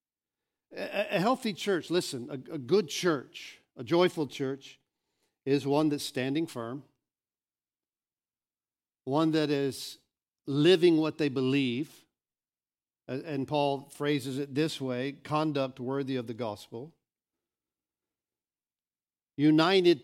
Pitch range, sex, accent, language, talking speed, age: 130-160 Hz, male, American, English, 105 wpm, 50-69